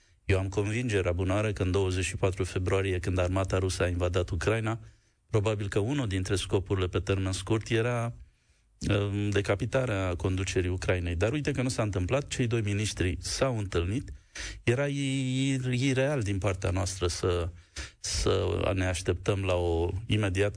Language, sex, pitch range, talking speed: Romanian, male, 95-115 Hz, 145 wpm